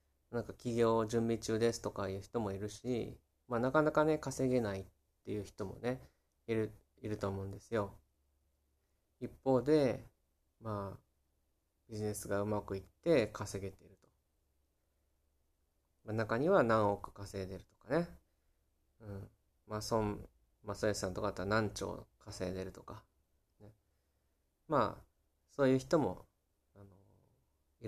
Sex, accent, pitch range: male, native, 80-120 Hz